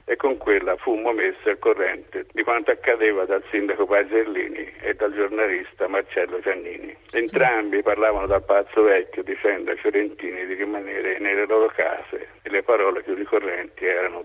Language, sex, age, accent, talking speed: Italian, male, 60-79, native, 155 wpm